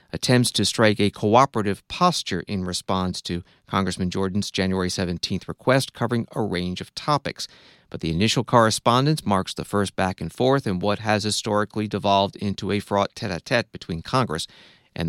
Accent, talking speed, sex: American, 165 wpm, male